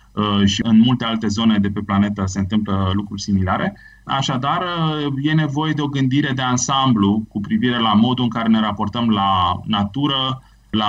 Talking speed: 170 wpm